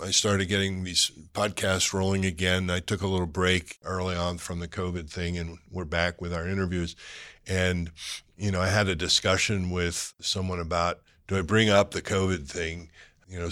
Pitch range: 85-95 Hz